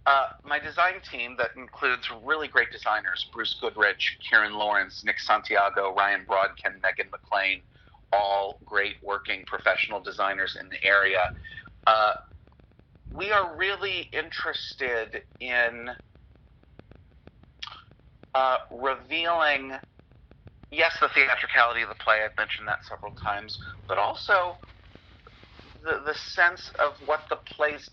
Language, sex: English, male